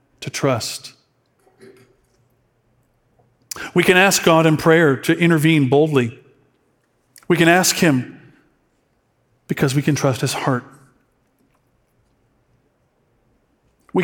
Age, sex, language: 50-69, male, English